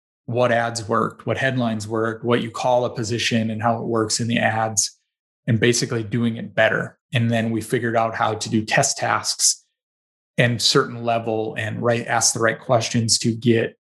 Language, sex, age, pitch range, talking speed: English, male, 20-39, 115-120 Hz, 190 wpm